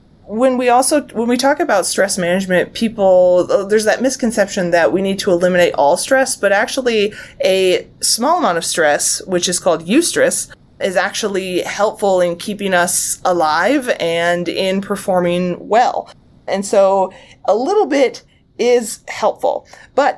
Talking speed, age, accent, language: 150 wpm, 20-39, American, English